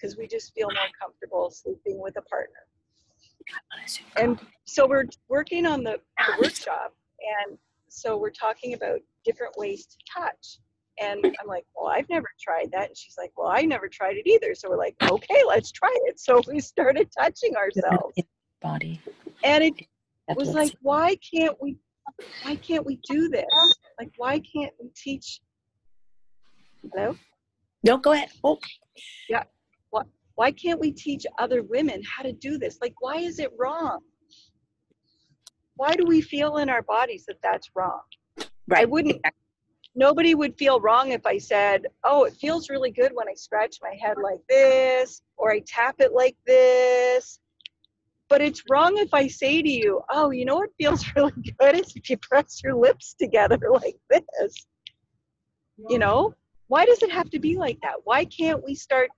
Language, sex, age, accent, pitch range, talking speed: English, female, 40-59, American, 245-360 Hz, 170 wpm